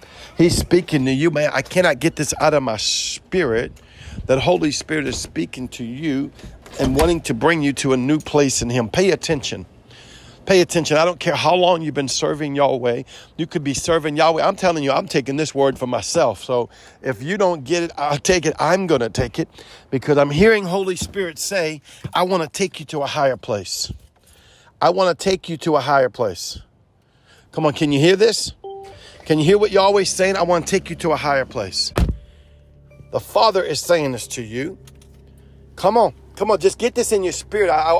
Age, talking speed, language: 50-69, 215 wpm, English